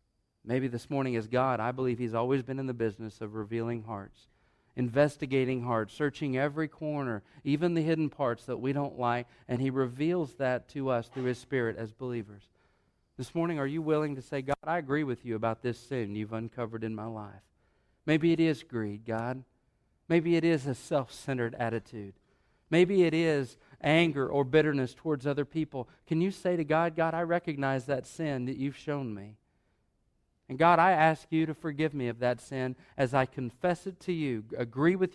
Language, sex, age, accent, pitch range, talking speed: English, male, 40-59, American, 115-145 Hz, 195 wpm